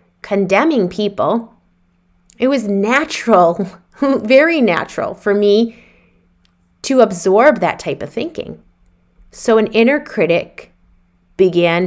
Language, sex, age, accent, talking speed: English, female, 30-49, American, 100 wpm